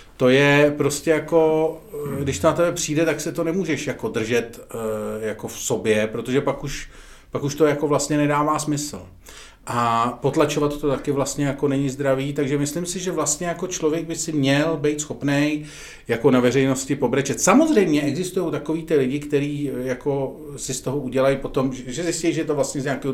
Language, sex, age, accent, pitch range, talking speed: Czech, male, 40-59, native, 120-150 Hz, 185 wpm